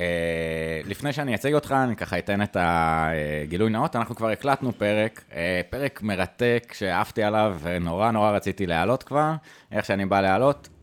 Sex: male